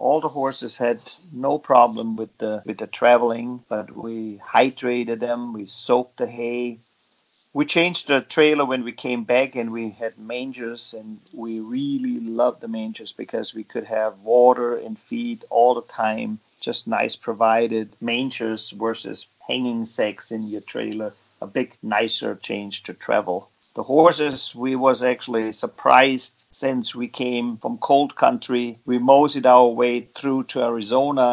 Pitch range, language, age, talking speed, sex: 115-130 Hz, English, 50-69, 155 wpm, male